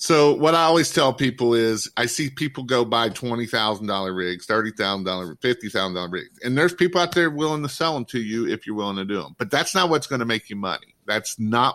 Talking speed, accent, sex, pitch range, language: 230 wpm, American, male, 105-135 Hz, English